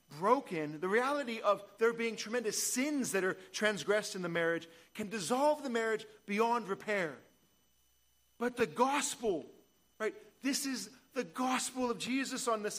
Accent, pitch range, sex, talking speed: American, 205-270 Hz, male, 150 wpm